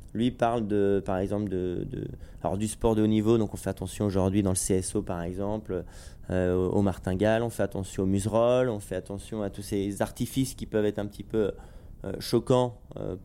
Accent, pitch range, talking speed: French, 100-115 Hz, 215 wpm